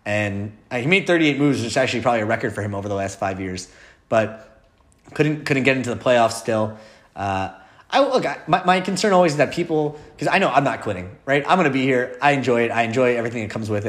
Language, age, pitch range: English, 30-49, 105-140 Hz